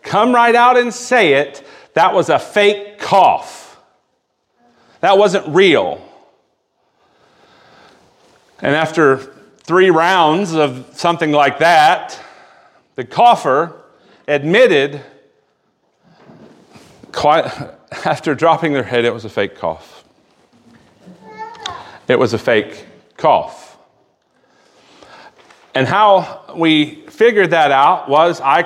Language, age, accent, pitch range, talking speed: English, 40-59, American, 150-200 Hz, 100 wpm